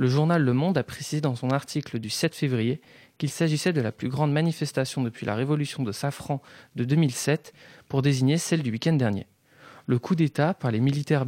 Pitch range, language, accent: 125-155 Hz, French, French